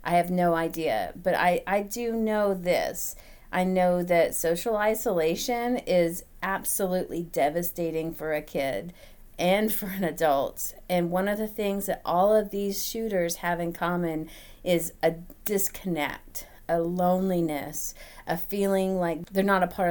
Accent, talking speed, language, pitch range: American, 150 wpm, English, 180-240 Hz